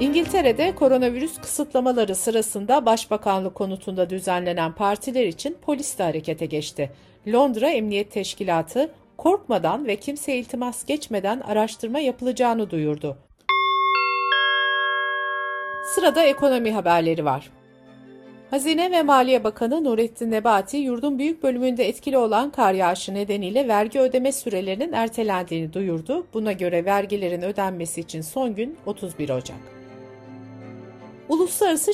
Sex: female